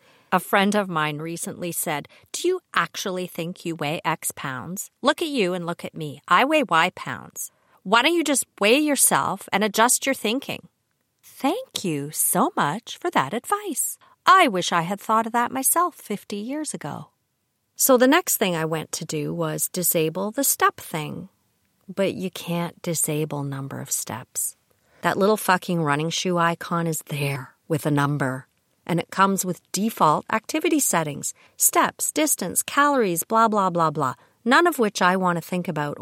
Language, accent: English, American